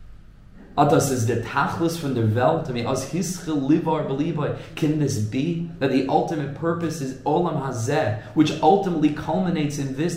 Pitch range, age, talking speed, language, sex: 125-155 Hz, 30-49, 90 wpm, English, male